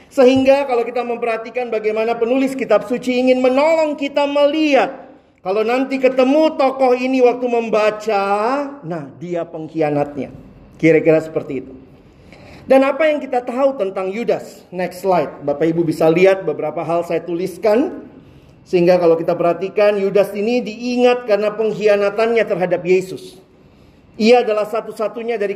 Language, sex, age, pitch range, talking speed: Indonesian, male, 40-59, 165-230 Hz, 135 wpm